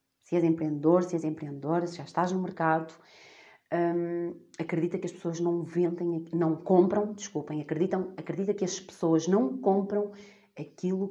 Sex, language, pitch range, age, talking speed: female, Portuguese, 165-245 Hz, 30-49, 155 wpm